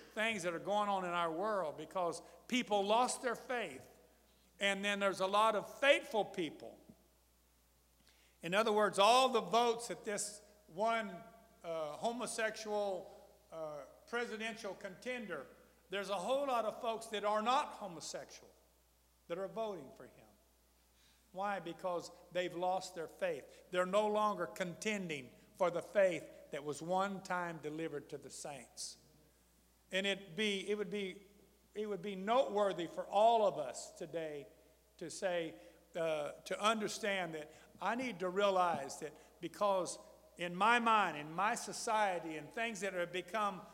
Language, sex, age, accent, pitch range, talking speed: English, male, 50-69, American, 165-215 Hz, 150 wpm